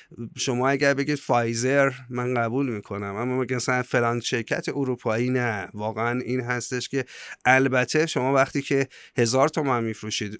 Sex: male